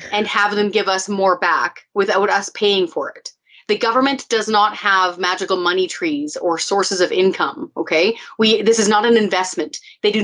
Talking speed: 195 wpm